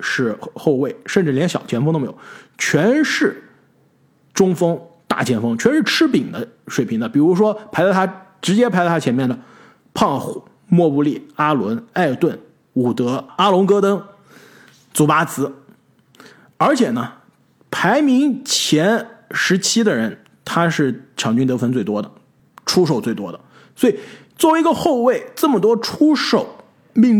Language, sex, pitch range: Chinese, male, 155-235 Hz